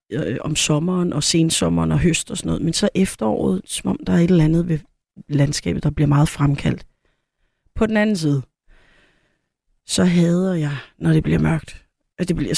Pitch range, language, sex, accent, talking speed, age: 155-200 Hz, Danish, female, native, 185 wpm, 30-49